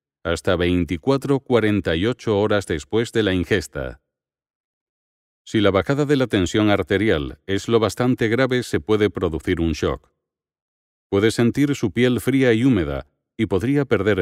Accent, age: Spanish, 40-59